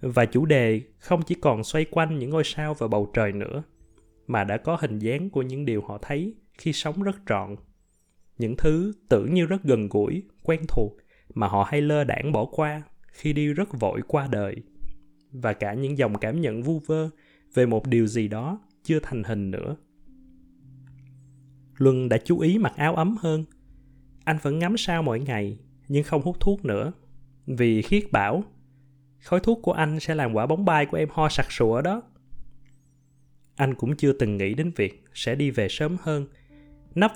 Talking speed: 190 wpm